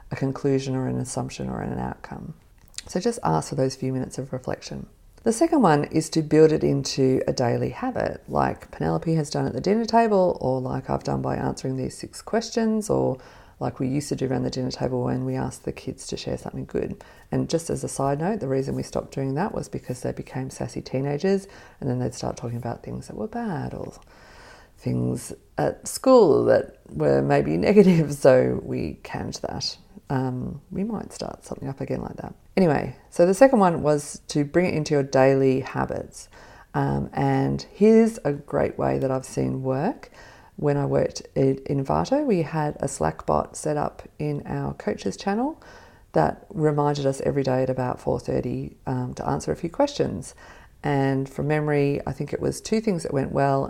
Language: English